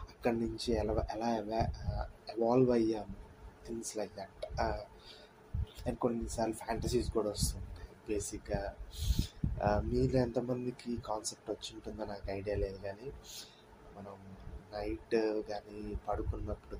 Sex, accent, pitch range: male, native, 100-115 Hz